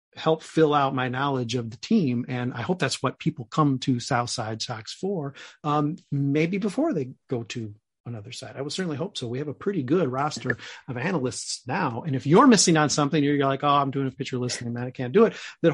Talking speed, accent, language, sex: 235 wpm, American, English, male